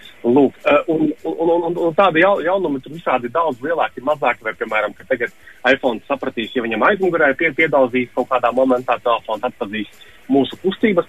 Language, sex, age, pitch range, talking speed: English, male, 30-49, 110-135 Hz, 145 wpm